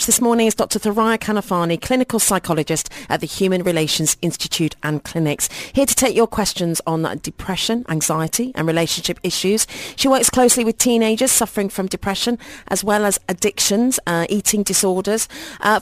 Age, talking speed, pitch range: 40-59, 160 wpm, 165-220 Hz